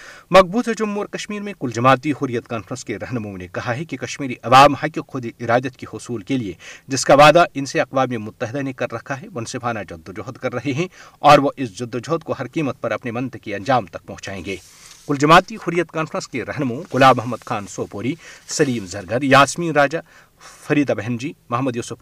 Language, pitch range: Urdu, 115-150 Hz